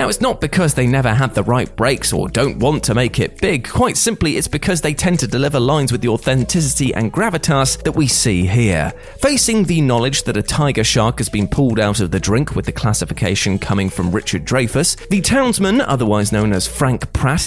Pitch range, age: 115-160 Hz, 30-49